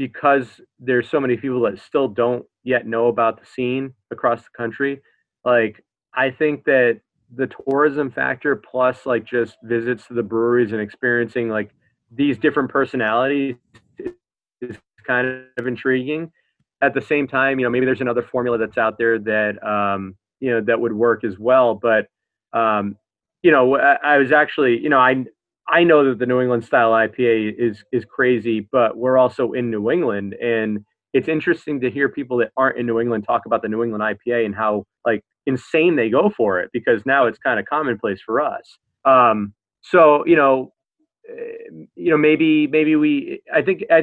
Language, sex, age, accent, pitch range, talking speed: English, male, 30-49, American, 115-140 Hz, 185 wpm